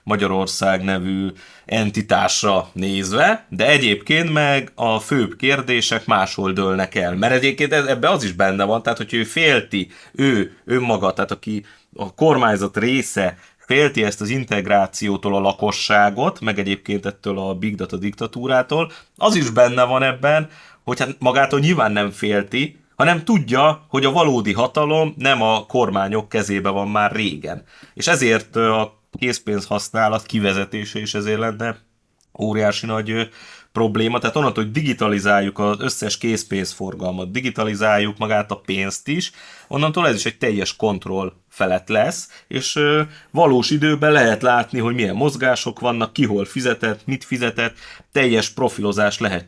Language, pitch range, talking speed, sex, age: Hungarian, 100-130 Hz, 140 wpm, male, 30-49